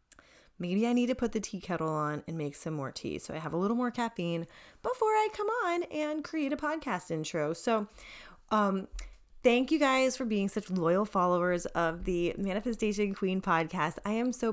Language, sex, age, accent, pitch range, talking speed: English, female, 20-39, American, 165-215 Hz, 200 wpm